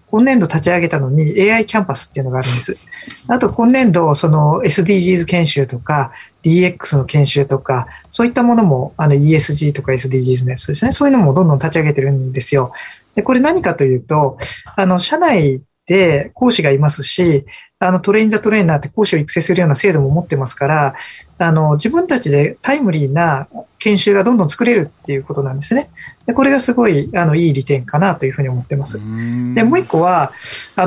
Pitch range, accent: 145-210 Hz, native